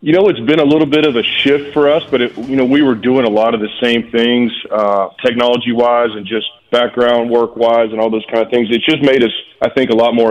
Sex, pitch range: male, 110-120 Hz